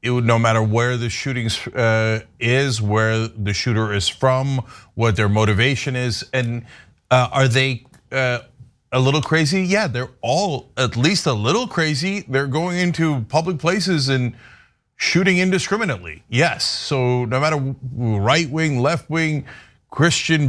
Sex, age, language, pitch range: male, 30-49, English, 120-170 Hz